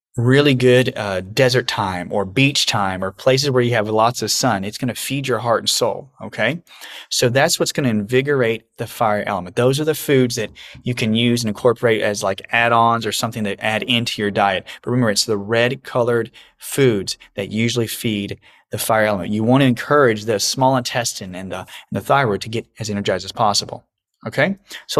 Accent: American